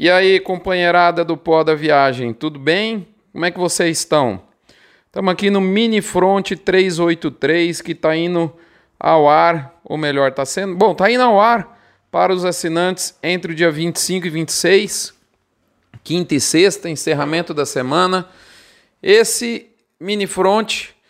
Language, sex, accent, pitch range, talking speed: Portuguese, male, Brazilian, 155-190 Hz, 150 wpm